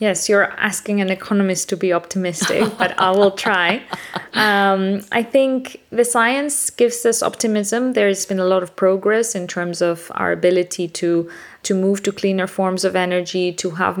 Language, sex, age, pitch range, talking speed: English, female, 20-39, 170-195 Hz, 175 wpm